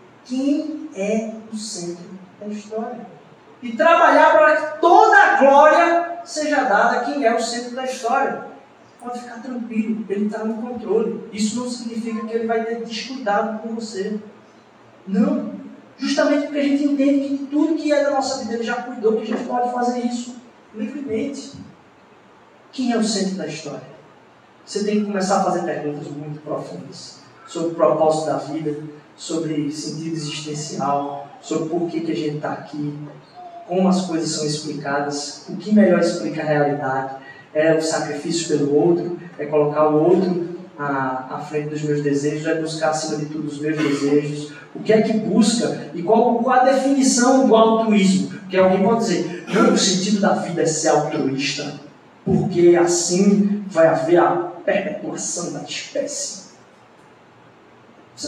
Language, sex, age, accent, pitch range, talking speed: Portuguese, male, 20-39, Brazilian, 155-240 Hz, 165 wpm